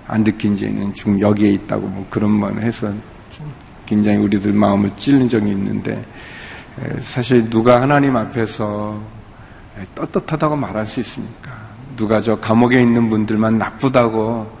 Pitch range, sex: 110-145 Hz, male